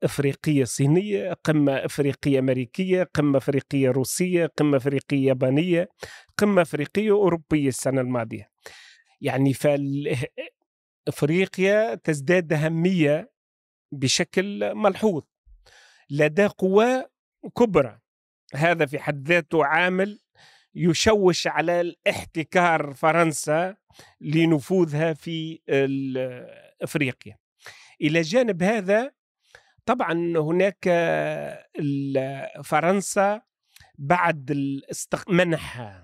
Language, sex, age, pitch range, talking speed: Arabic, male, 40-59, 145-195 Hz, 75 wpm